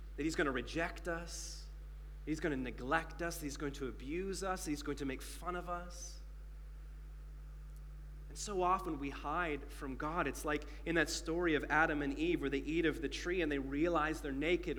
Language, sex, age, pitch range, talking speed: English, male, 30-49, 140-170 Hz, 205 wpm